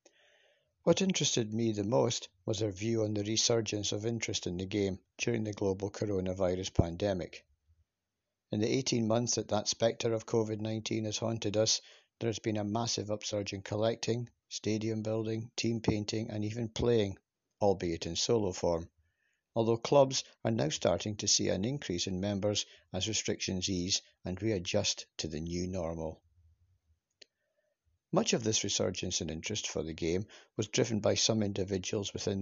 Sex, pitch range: male, 95-110 Hz